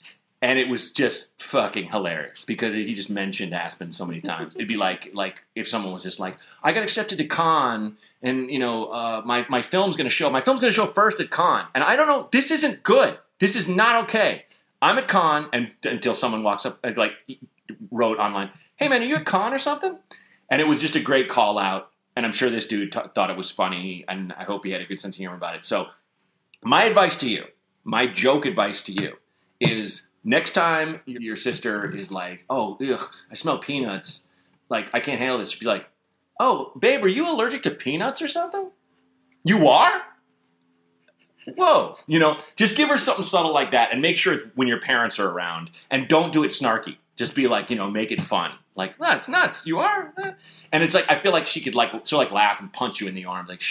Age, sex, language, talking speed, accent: 30-49, male, English, 225 wpm, American